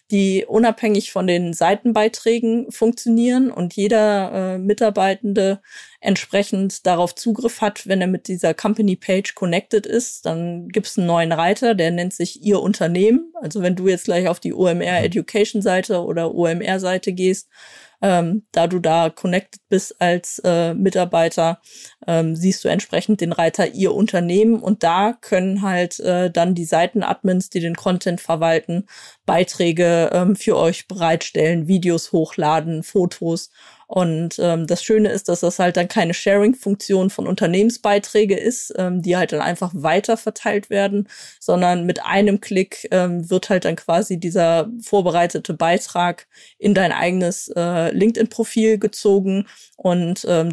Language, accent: German, German